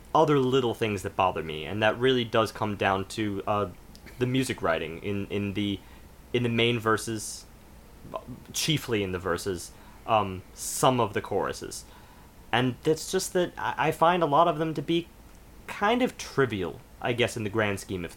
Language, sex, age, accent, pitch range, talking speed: English, male, 30-49, American, 100-145 Hz, 175 wpm